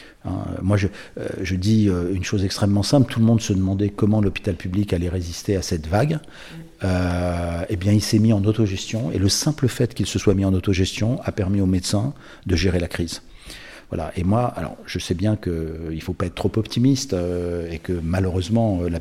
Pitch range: 90-115 Hz